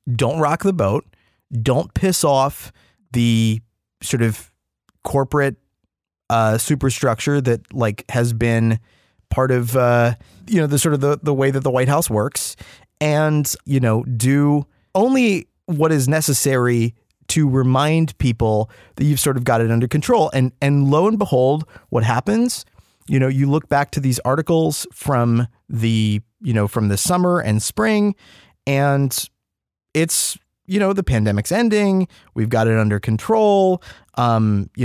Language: English